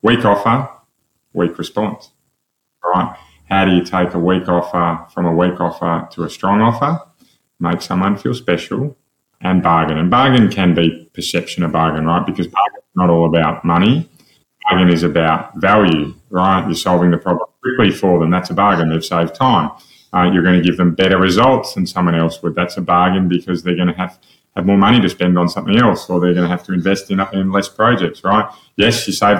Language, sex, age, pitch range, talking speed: English, male, 20-39, 90-105 Hz, 205 wpm